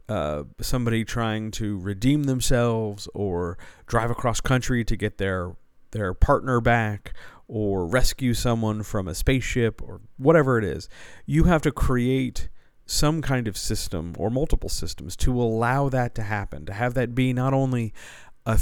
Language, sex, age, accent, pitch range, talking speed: English, male, 40-59, American, 95-125 Hz, 160 wpm